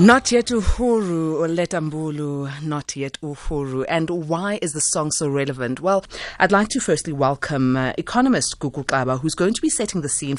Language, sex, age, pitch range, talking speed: English, female, 30-49, 135-165 Hz, 175 wpm